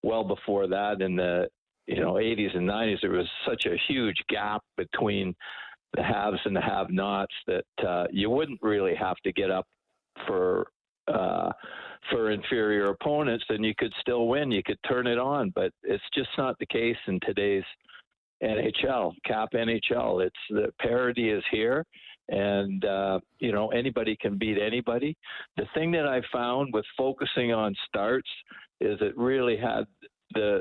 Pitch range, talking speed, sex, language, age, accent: 105-130 Hz, 165 wpm, male, English, 60-79, American